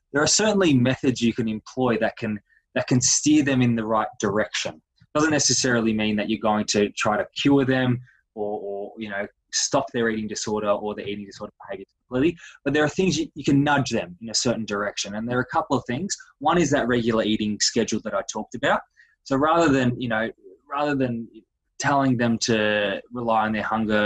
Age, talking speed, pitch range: 20-39, 215 wpm, 110-135 Hz